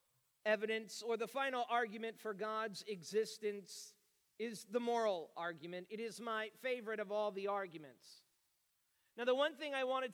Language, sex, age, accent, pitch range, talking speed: English, male, 40-59, American, 195-235 Hz, 155 wpm